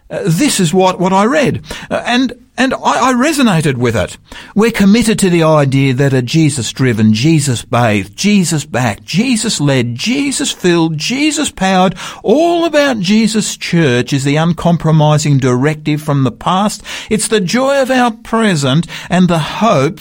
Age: 50-69